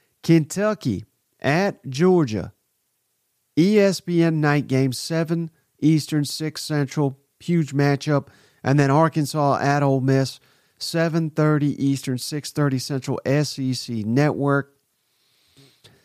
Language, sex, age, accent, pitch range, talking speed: English, male, 40-59, American, 130-165 Hz, 90 wpm